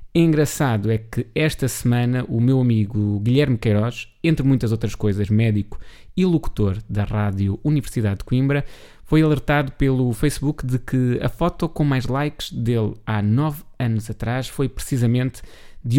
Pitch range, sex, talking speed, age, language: 110-140 Hz, male, 155 wpm, 20-39, Portuguese